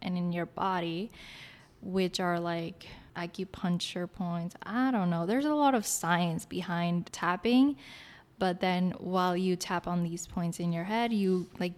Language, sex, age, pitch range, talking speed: English, female, 10-29, 170-200 Hz, 165 wpm